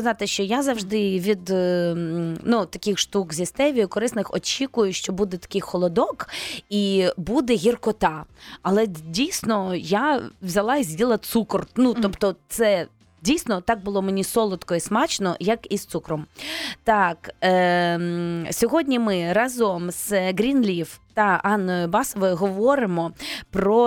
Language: Ukrainian